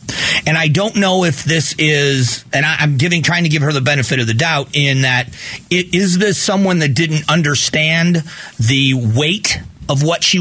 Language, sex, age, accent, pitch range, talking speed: English, male, 40-59, American, 125-155 Hz, 195 wpm